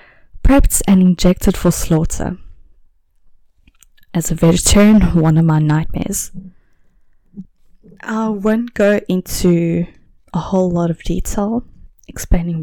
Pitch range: 150-180 Hz